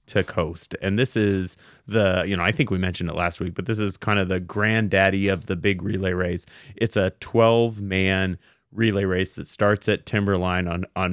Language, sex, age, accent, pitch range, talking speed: English, male, 30-49, American, 90-110 Hz, 210 wpm